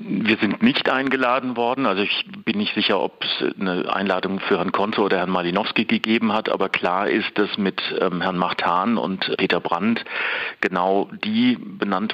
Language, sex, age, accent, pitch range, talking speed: German, male, 40-59, German, 95-110 Hz, 175 wpm